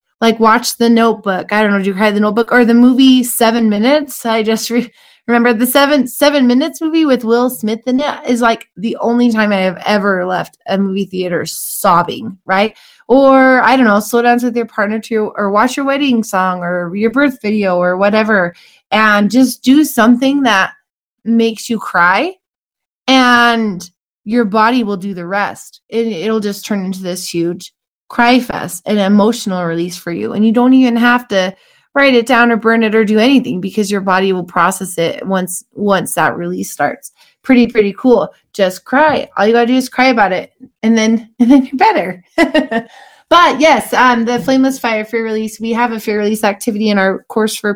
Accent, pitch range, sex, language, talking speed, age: American, 195-245 Hz, female, English, 200 wpm, 20-39